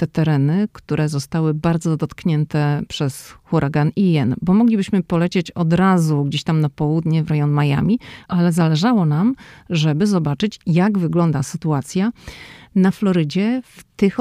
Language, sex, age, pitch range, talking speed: Polish, female, 40-59, 150-180 Hz, 140 wpm